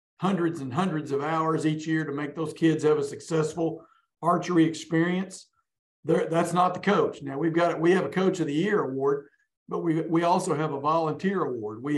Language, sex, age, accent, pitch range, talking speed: English, male, 50-69, American, 145-170 Hz, 205 wpm